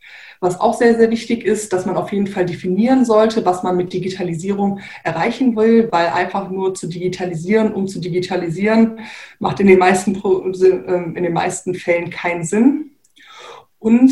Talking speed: 165 wpm